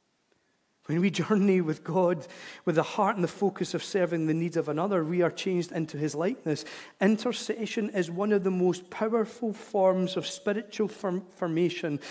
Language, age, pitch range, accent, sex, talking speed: English, 40-59, 180-230 Hz, British, male, 170 wpm